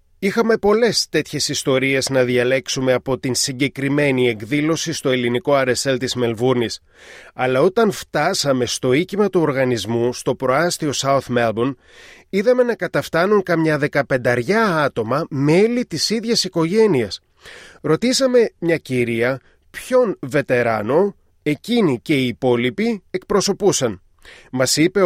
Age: 30-49